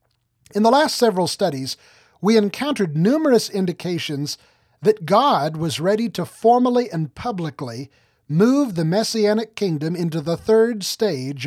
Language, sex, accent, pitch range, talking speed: English, male, American, 150-210 Hz, 130 wpm